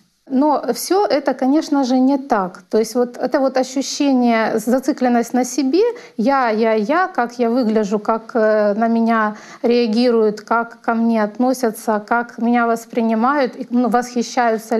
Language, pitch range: Russian, 225-270 Hz